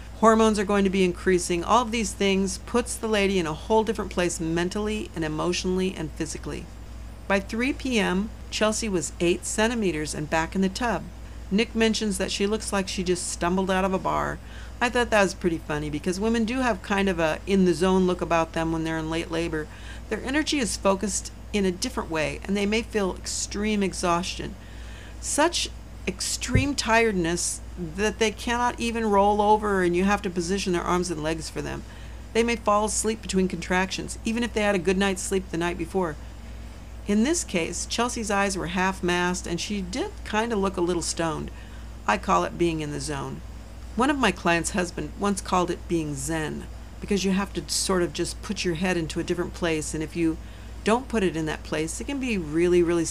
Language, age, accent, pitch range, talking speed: English, 50-69, American, 170-215 Hz, 205 wpm